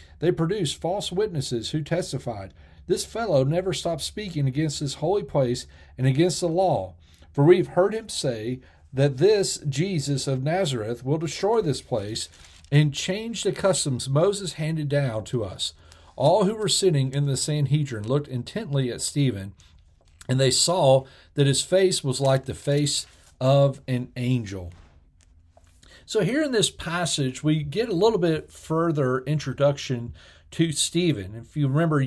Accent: American